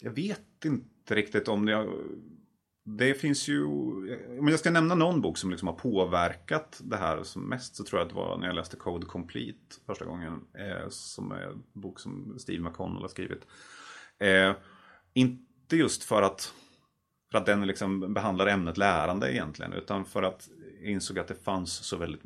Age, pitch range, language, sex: 30-49, 90-105 Hz, Swedish, male